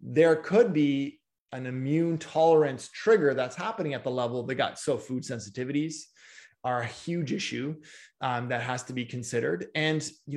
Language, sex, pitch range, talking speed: English, male, 130-165 Hz, 175 wpm